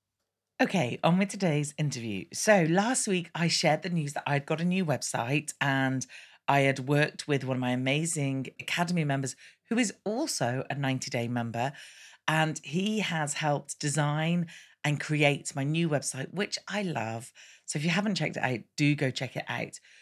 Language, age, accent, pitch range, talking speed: English, 40-59, British, 140-180 Hz, 180 wpm